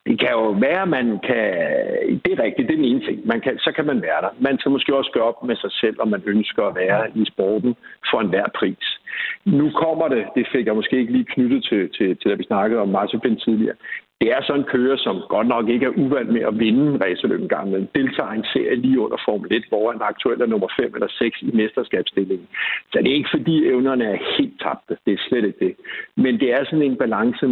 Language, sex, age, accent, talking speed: Danish, male, 60-79, native, 255 wpm